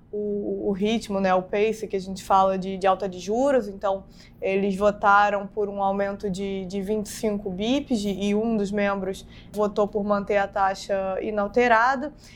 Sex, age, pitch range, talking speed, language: female, 20-39, 205-240 Hz, 165 wpm, Portuguese